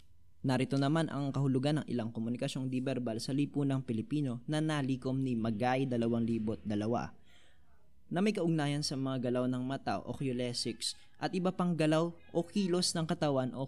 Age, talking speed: 20-39, 155 wpm